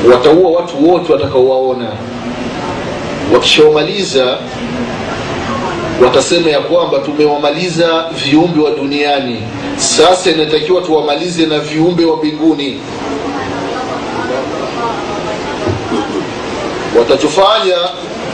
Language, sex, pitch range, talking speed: Swahili, male, 140-185 Hz, 60 wpm